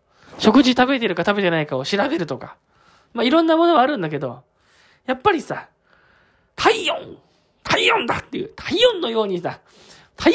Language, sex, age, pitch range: Japanese, male, 20-39, 180-265 Hz